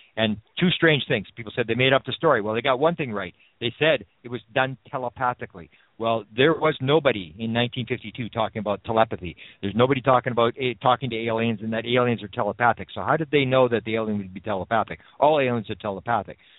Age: 50-69